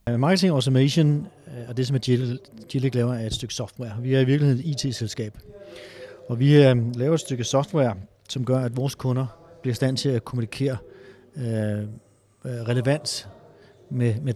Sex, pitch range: male, 120-145 Hz